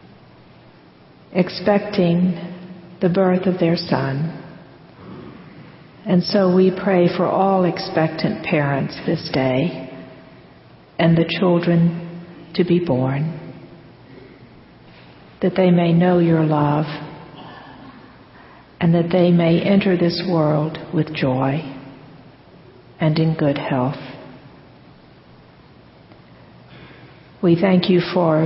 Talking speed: 95 wpm